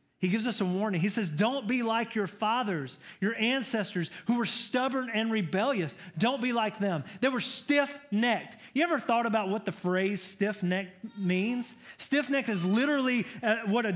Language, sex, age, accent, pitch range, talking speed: English, male, 30-49, American, 175-245 Hz, 170 wpm